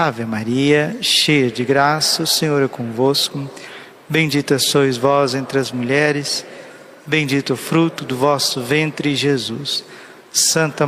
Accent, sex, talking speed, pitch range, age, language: Brazilian, male, 125 wpm, 140-165 Hz, 50-69, Portuguese